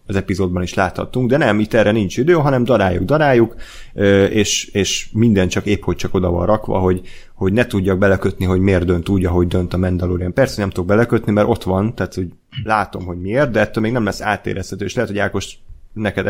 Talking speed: 215 wpm